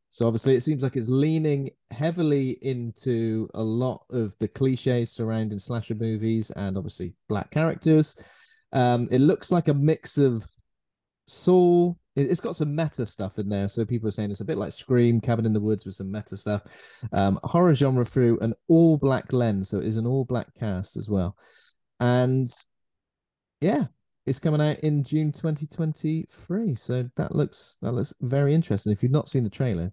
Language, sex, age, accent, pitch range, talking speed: English, male, 20-39, British, 110-145 Hz, 180 wpm